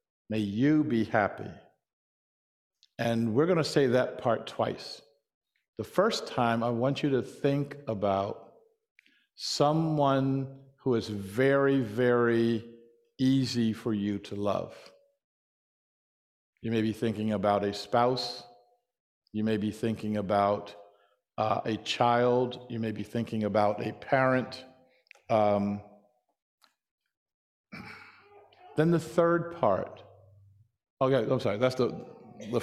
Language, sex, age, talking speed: English, male, 50-69, 120 wpm